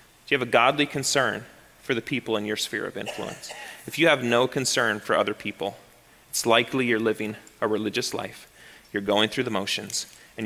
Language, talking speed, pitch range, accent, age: English, 195 wpm, 110-140 Hz, American, 30-49